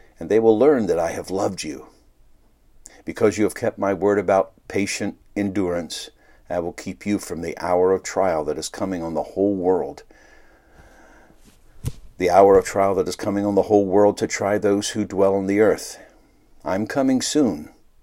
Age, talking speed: 60-79, 185 wpm